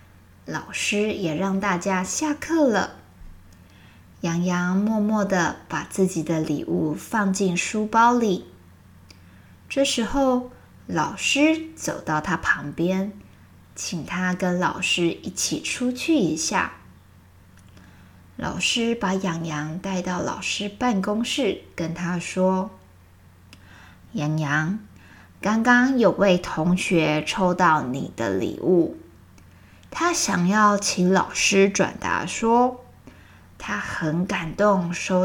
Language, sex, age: Chinese, female, 20-39